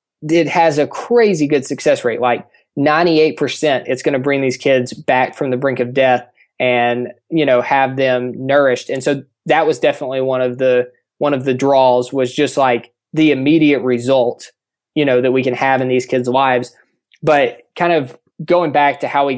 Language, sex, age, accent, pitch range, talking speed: English, male, 20-39, American, 125-145 Hz, 195 wpm